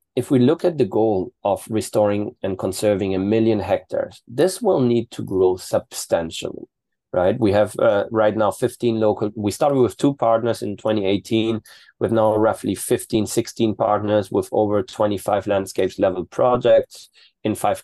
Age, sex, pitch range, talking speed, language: 30-49, male, 100-125 Hz, 160 wpm, German